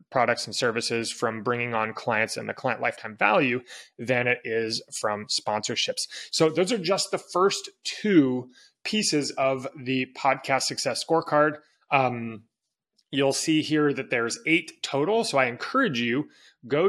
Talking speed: 155 wpm